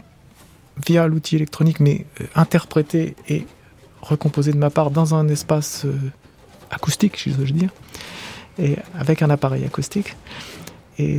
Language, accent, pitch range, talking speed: French, French, 145-165 Hz, 130 wpm